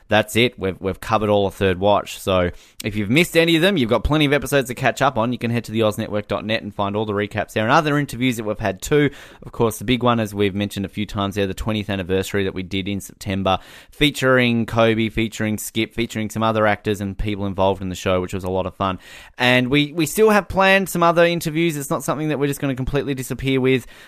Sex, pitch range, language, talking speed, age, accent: male, 95-125 Hz, English, 255 wpm, 20-39, Australian